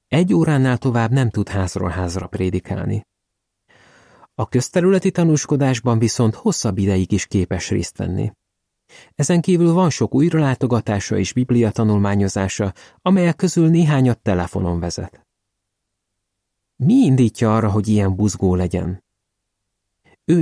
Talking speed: 110 wpm